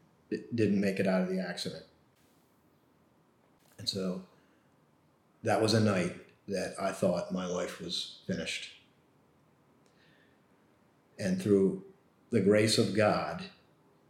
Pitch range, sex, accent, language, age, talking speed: 95-115 Hz, male, American, English, 40-59, 115 wpm